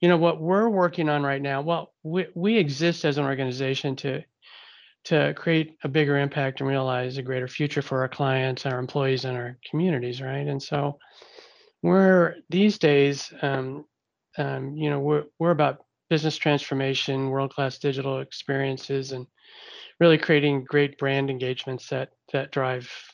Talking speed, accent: 160 wpm, American